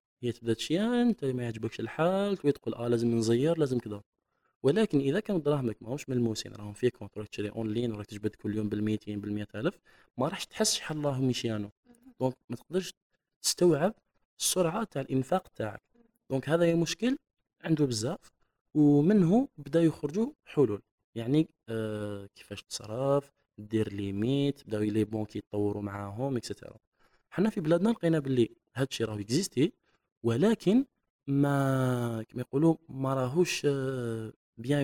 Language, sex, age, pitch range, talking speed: Arabic, male, 20-39, 110-155 Hz, 145 wpm